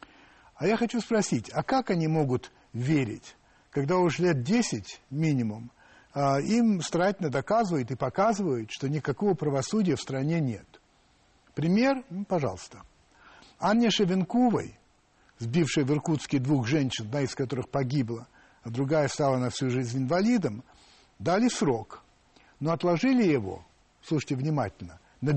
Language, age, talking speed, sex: Russian, 60-79, 125 wpm, male